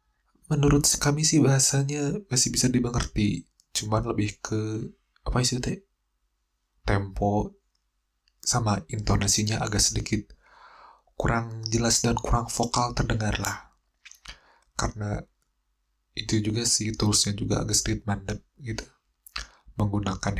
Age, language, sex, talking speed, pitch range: 20-39, Indonesian, male, 105 wpm, 100-115 Hz